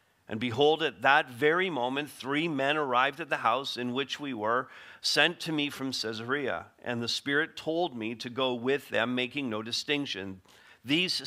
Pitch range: 120-150 Hz